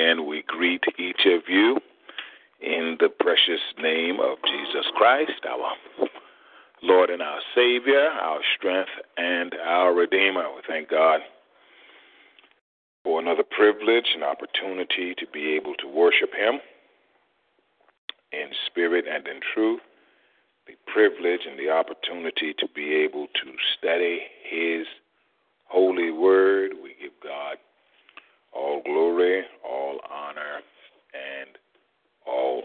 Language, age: English, 40-59